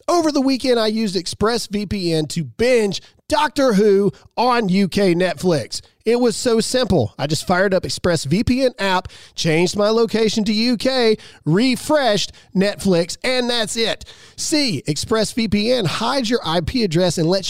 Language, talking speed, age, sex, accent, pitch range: English, 140 wpm, 40-59, male, American, 155-235 Hz